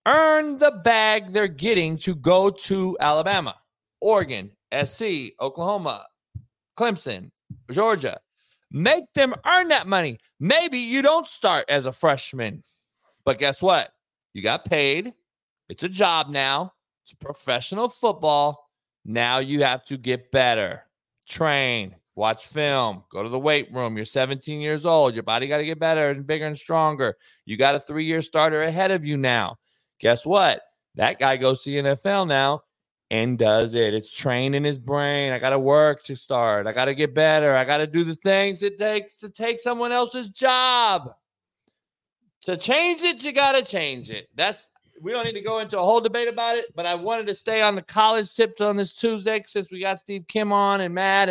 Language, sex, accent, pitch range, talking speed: English, male, American, 145-220 Hz, 180 wpm